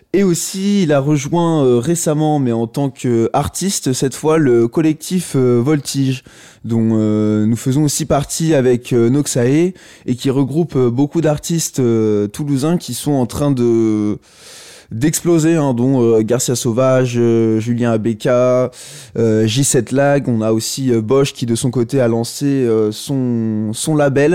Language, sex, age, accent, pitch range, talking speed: French, male, 20-39, French, 120-155 Hz, 160 wpm